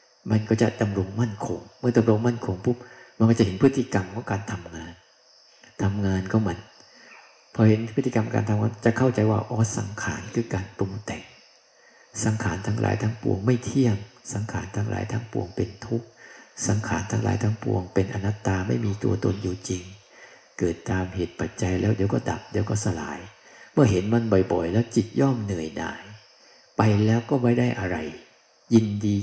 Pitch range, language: 95-115 Hz, Thai